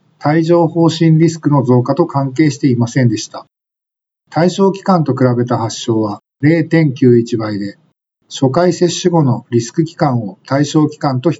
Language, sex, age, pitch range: Japanese, male, 50-69, 125-160 Hz